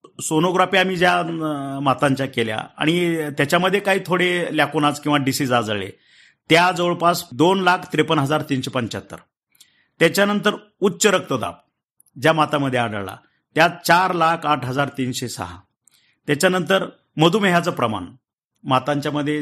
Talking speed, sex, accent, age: 100 wpm, male, native, 50-69